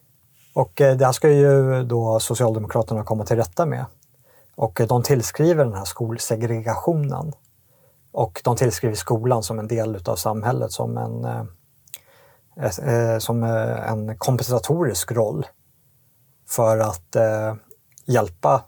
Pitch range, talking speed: 110-130 Hz, 110 wpm